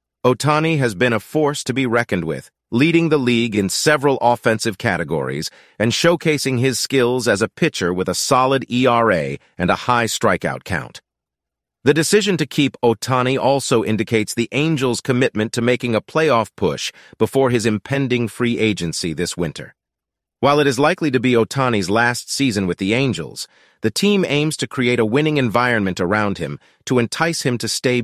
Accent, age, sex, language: American, 40-59, male, English